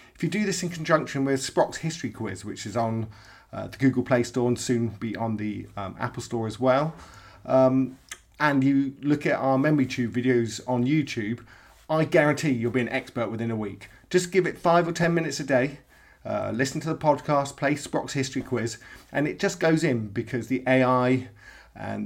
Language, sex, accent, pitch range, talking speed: English, male, British, 120-155 Hz, 205 wpm